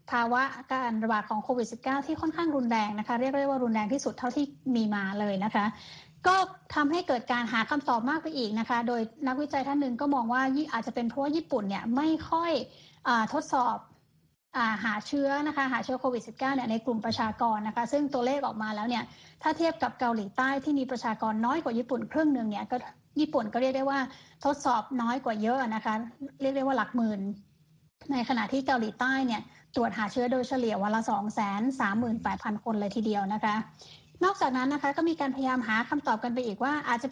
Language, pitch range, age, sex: Thai, 225-275 Hz, 20-39, female